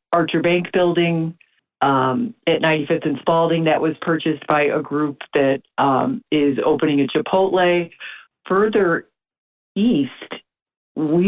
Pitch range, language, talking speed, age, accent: 150-180 Hz, English, 120 wpm, 50-69, American